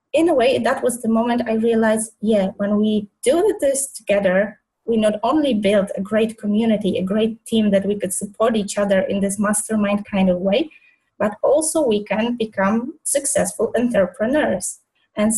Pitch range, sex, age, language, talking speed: 210-250 Hz, female, 20-39, English, 175 wpm